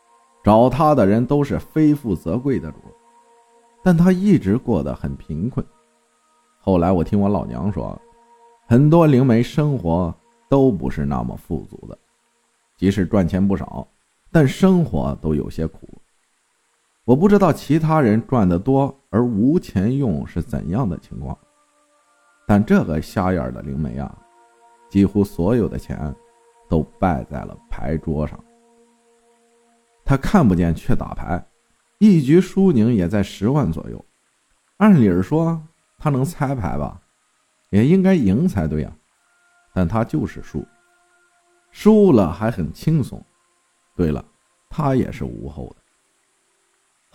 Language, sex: Chinese, male